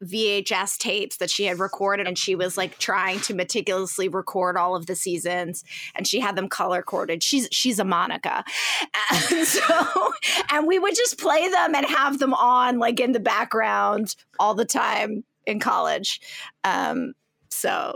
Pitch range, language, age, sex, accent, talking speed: 185-245 Hz, English, 20-39, female, American, 170 wpm